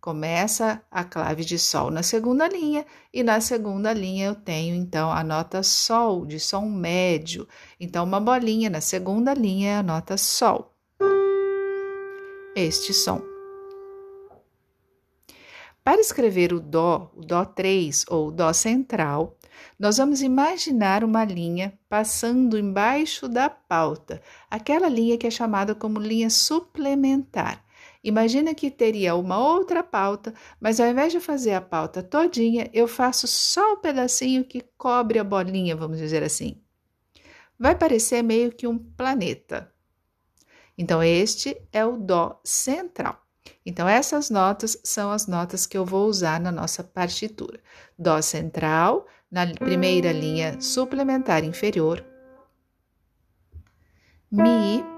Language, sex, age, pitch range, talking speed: Amharic, female, 50-69, 175-260 Hz, 130 wpm